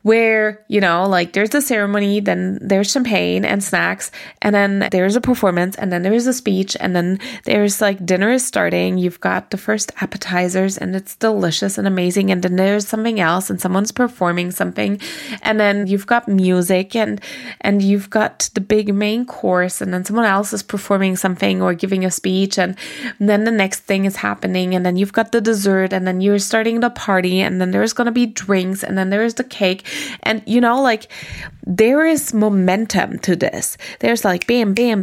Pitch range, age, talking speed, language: 190-235 Hz, 20-39, 200 wpm, English